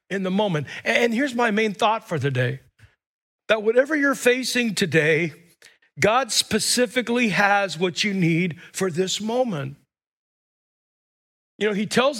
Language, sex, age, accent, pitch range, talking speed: English, male, 50-69, American, 170-255 Hz, 140 wpm